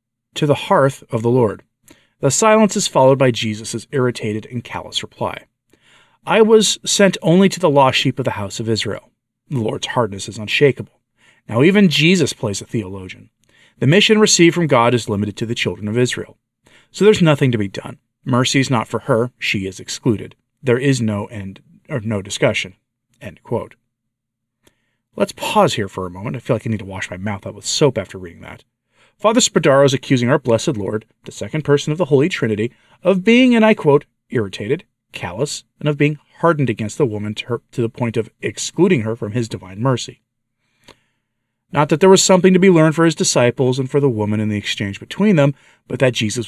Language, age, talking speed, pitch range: English, 40-59, 205 wpm, 110-150 Hz